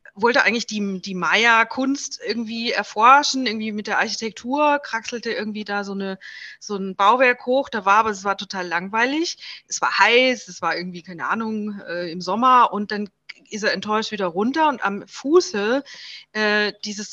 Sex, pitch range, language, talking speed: female, 200-260 Hz, German, 170 wpm